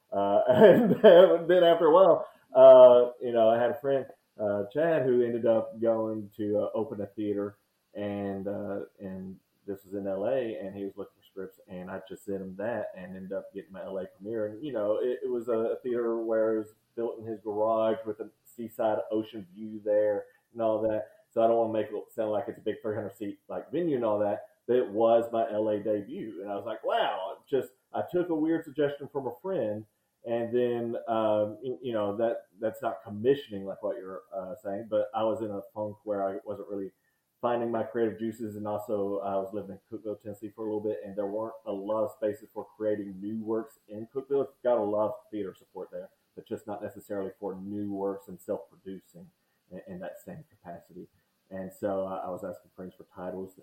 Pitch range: 100-120 Hz